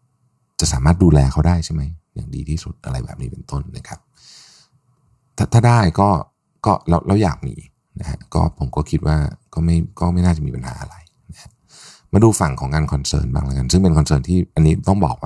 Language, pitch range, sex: Thai, 75-115 Hz, male